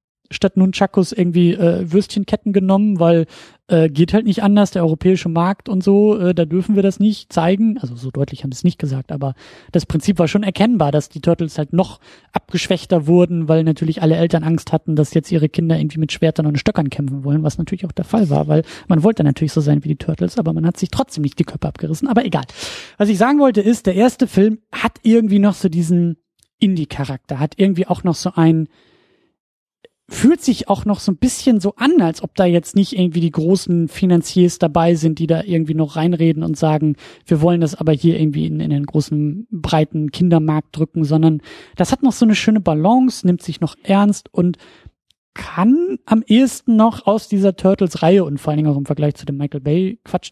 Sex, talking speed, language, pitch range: male, 215 wpm, German, 160-205 Hz